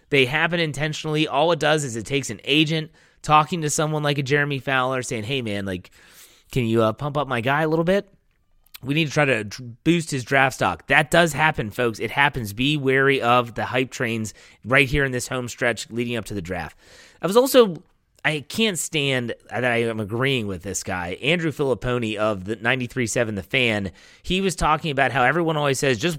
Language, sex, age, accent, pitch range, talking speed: English, male, 30-49, American, 120-155 Hz, 215 wpm